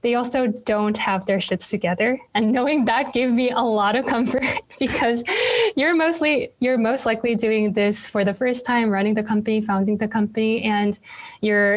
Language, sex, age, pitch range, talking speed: English, female, 10-29, 200-235 Hz, 185 wpm